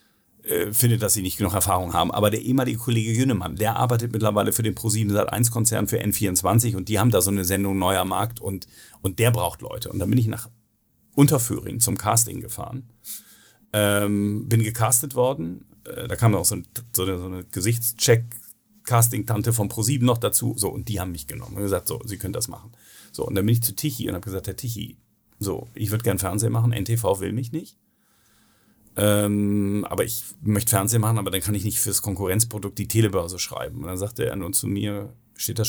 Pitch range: 100-115 Hz